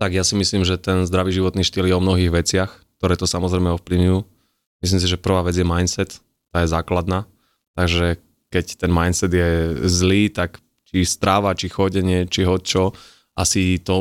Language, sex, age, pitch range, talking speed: Slovak, male, 20-39, 95-115 Hz, 190 wpm